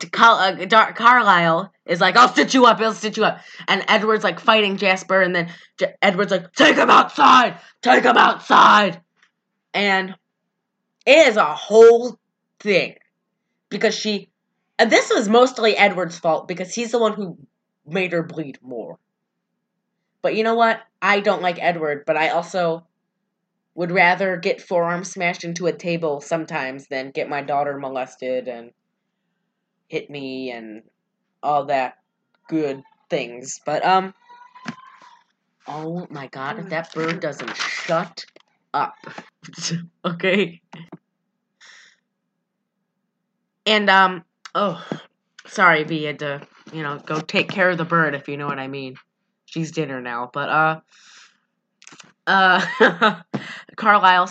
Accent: American